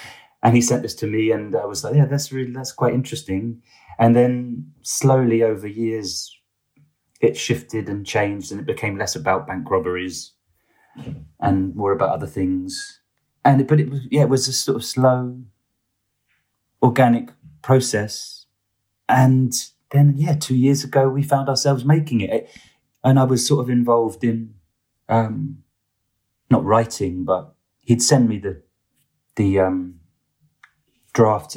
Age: 30-49